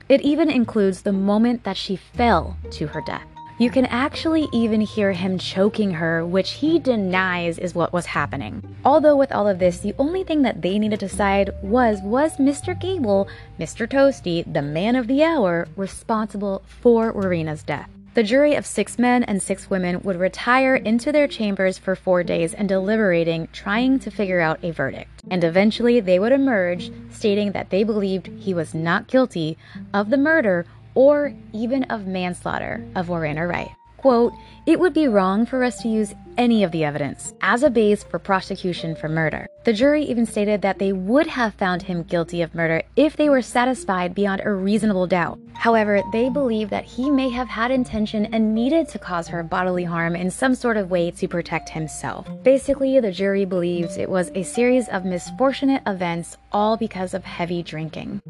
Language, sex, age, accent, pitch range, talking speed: English, female, 20-39, American, 180-245 Hz, 185 wpm